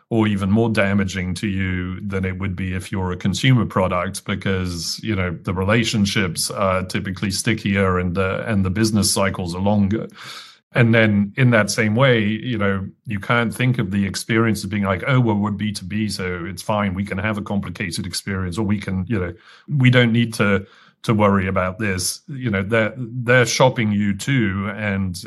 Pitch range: 95-110 Hz